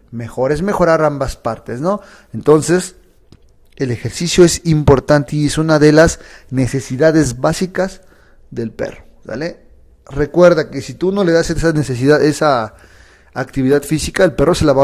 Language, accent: Spanish, Mexican